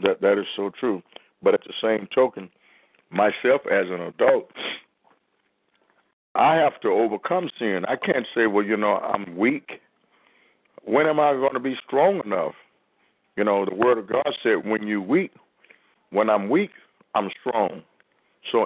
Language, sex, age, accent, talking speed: English, male, 60-79, American, 165 wpm